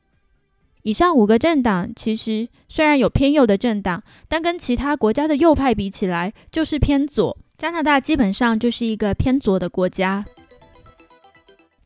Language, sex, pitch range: Chinese, female, 200-260 Hz